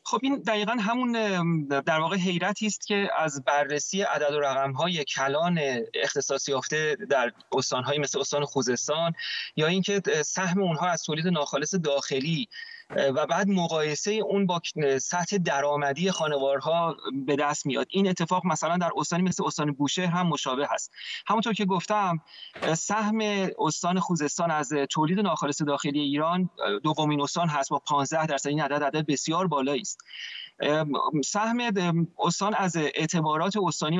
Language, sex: Persian, male